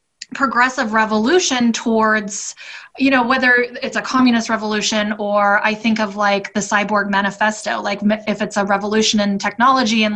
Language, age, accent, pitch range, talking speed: English, 20-39, American, 210-265 Hz, 155 wpm